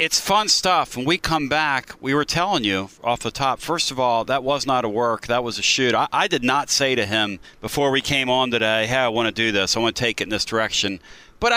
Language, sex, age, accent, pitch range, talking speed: English, male, 40-59, American, 125-160 Hz, 275 wpm